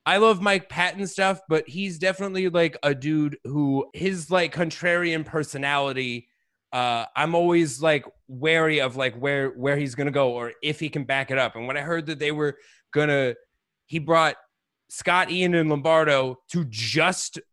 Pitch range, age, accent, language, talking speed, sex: 135-170 Hz, 30-49, American, English, 175 wpm, male